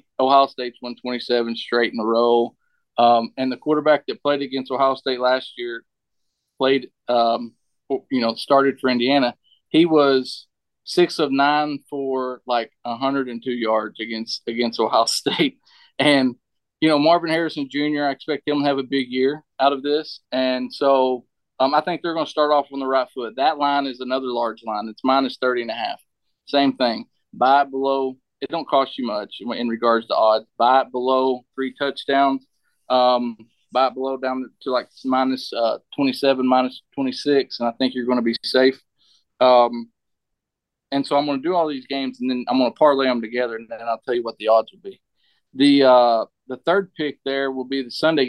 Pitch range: 120-140 Hz